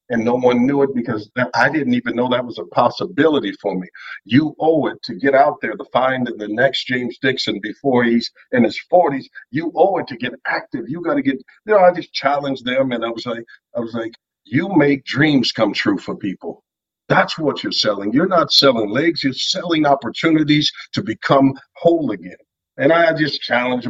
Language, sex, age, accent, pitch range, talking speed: English, male, 50-69, American, 120-175 Hz, 210 wpm